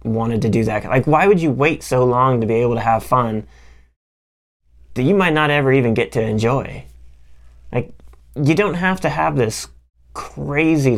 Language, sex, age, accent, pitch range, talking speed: English, male, 20-39, American, 110-140 Hz, 185 wpm